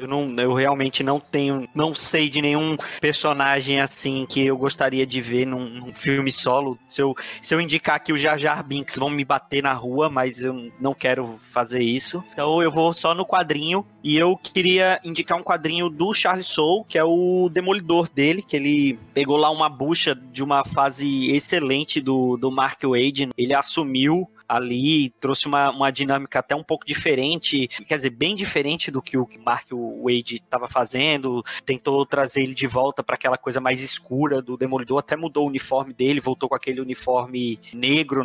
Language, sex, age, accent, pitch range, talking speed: Portuguese, male, 20-39, Brazilian, 130-150 Hz, 190 wpm